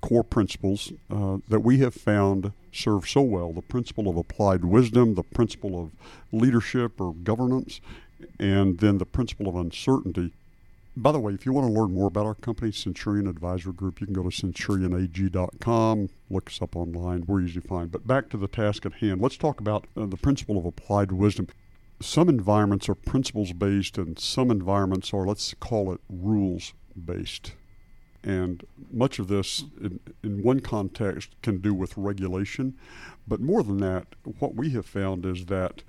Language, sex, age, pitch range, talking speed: English, male, 60-79, 95-110 Hz, 180 wpm